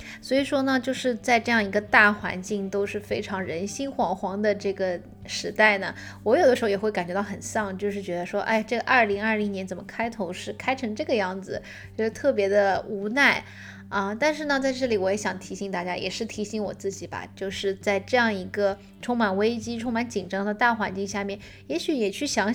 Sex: female